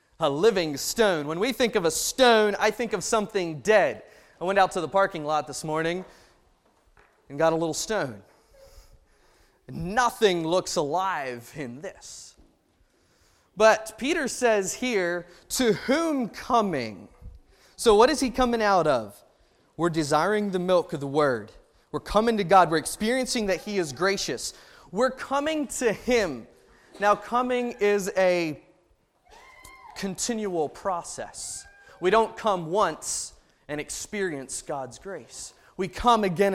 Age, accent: 20-39, American